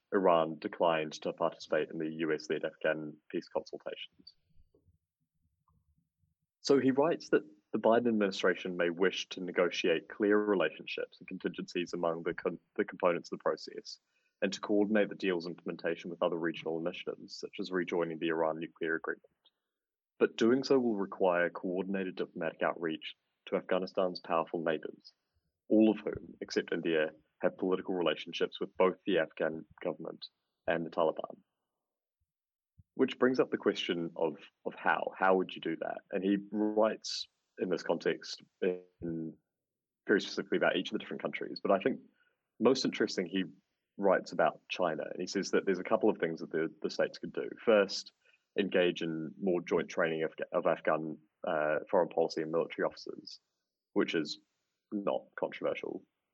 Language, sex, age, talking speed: English, male, 20-39, 160 wpm